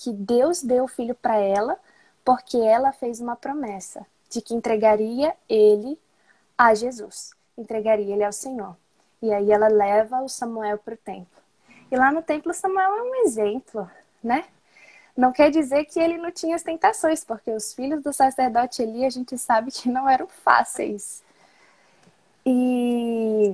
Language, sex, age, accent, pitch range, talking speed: Portuguese, female, 10-29, Brazilian, 235-320 Hz, 160 wpm